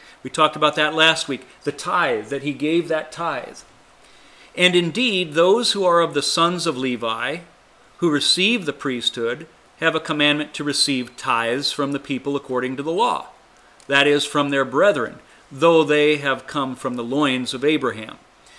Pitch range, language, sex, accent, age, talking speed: 135-165 Hz, English, male, American, 40-59, 175 wpm